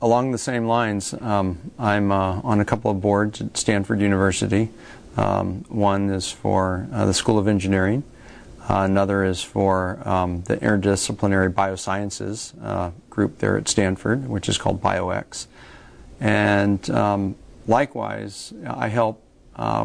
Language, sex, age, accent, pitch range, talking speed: English, male, 40-59, American, 100-120 Hz, 140 wpm